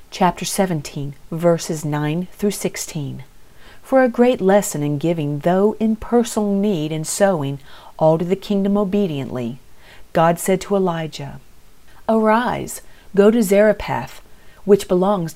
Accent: American